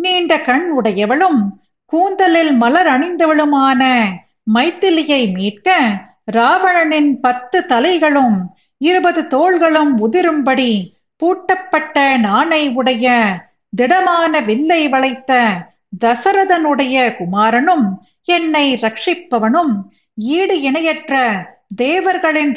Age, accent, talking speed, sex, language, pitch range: 50-69, native, 70 wpm, female, Tamil, 240-335 Hz